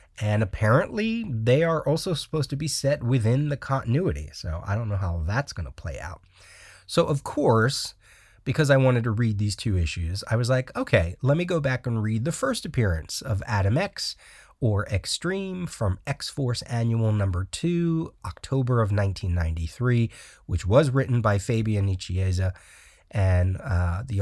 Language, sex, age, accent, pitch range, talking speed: English, male, 30-49, American, 95-135 Hz, 170 wpm